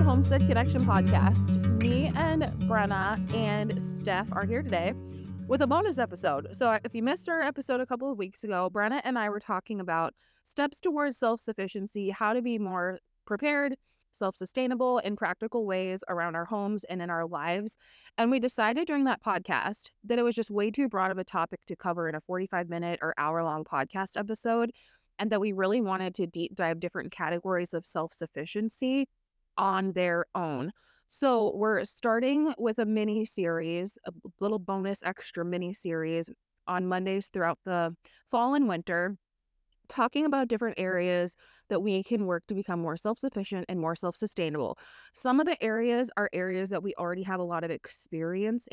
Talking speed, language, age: 170 wpm, English, 20-39